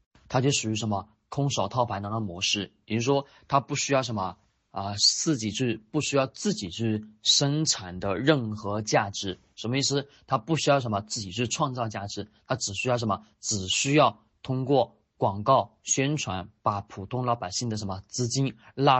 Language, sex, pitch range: Chinese, male, 105-130 Hz